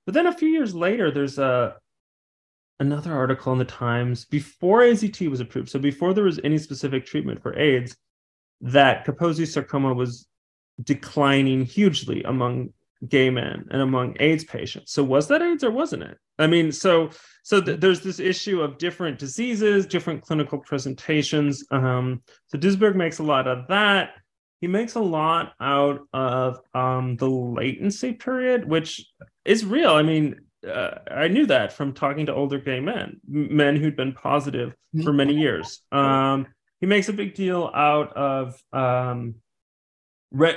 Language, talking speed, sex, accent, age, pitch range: English, 165 wpm, male, American, 30-49, 130-170 Hz